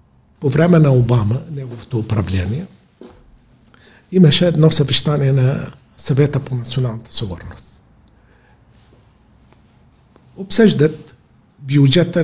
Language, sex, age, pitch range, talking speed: Bulgarian, male, 50-69, 115-165 Hz, 80 wpm